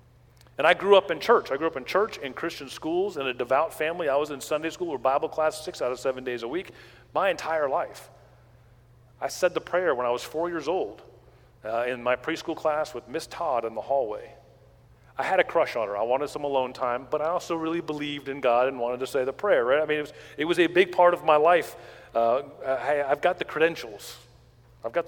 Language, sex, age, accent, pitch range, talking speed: English, male, 40-59, American, 120-160 Hz, 245 wpm